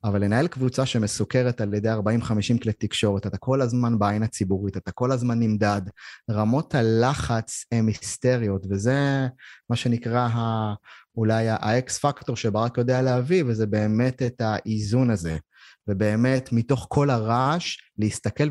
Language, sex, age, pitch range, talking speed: Hebrew, male, 20-39, 105-125 Hz, 135 wpm